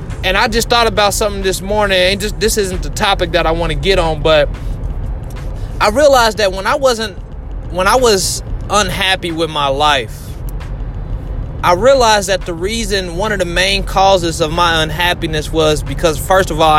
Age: 20-39